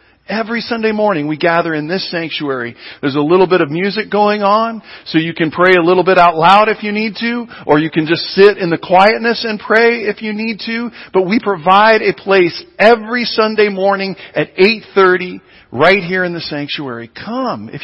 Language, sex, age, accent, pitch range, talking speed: English, male, 40-59, American, 185-235 Hz, 200 wpm